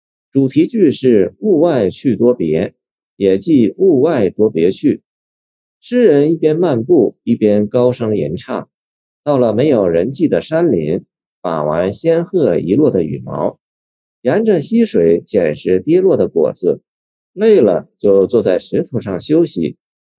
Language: Chinese